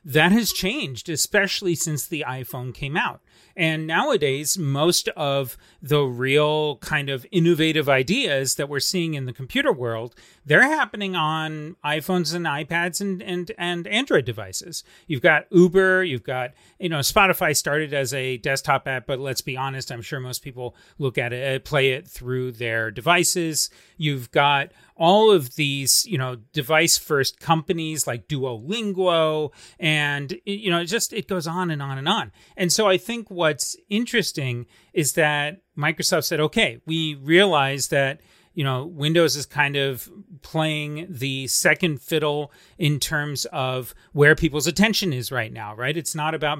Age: 30-49